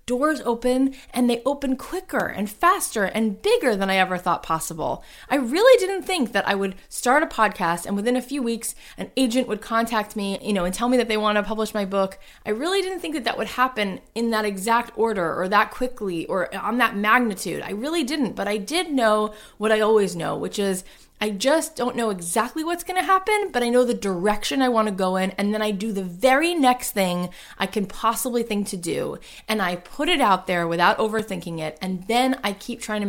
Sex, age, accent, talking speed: female, 20-39, American, 230 wpm